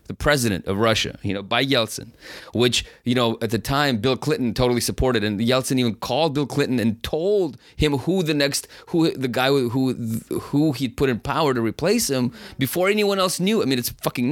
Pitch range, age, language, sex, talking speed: 100-125 Hz, 30-49, English, male, 210 wpm